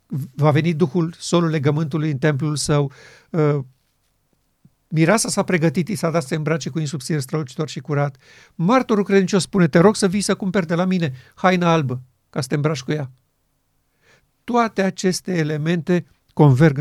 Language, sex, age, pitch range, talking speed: Romanian, male, 50-69, 135-165 Hz, 165 wpm